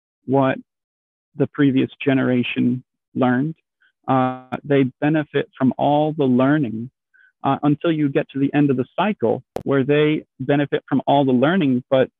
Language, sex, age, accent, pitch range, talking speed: English, male, 40-59, American, 125-145 Hz, 150 wpm